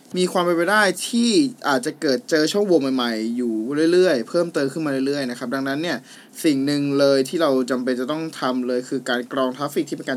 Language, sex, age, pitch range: Thai, male, 20-39, 135-175 Hz